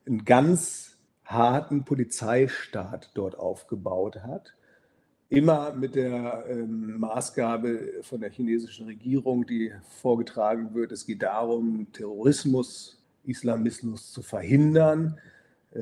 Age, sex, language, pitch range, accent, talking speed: 50-69, male, German, 115-140 Hz, German, 95 wpm